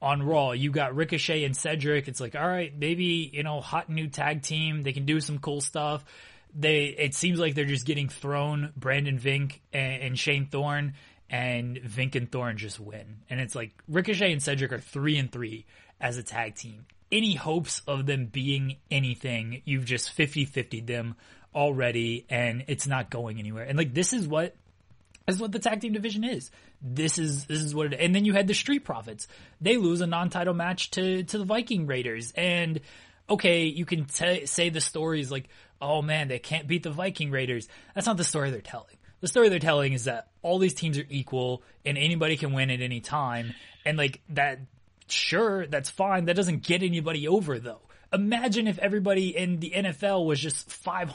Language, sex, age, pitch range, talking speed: English, male, 20-39, 130-175 Hz, 200 wpm